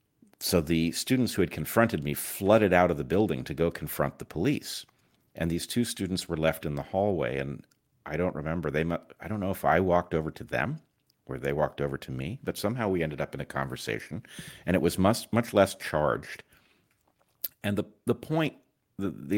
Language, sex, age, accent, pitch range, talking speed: English, male, 50-69, American, 80-105 Hz, 210 wpm